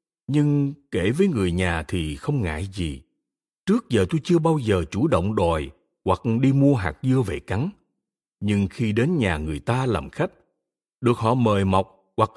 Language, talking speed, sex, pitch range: Vietnamese, 185 wpm, male, 95-145 Hz